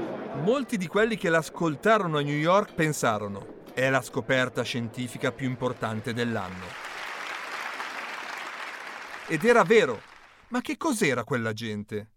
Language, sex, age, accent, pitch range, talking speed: Italian, male, 40-59, native, 135-210 Hz, 120 wpm